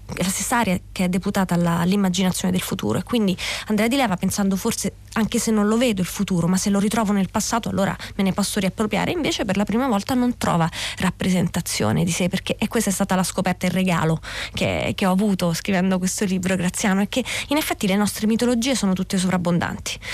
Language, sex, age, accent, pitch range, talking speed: Italian, female, 20-39, native, 180-225 Hz, 220 wpm